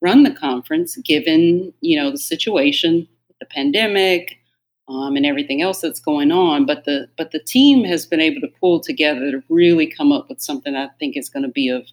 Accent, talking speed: American, 205 wpm